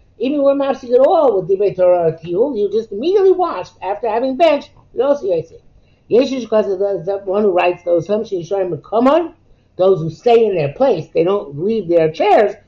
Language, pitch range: English, 165-240 Hz